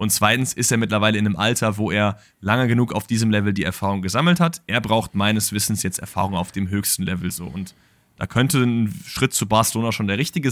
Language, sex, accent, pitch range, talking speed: German, male, German, 95-110 Hz, 230 wpm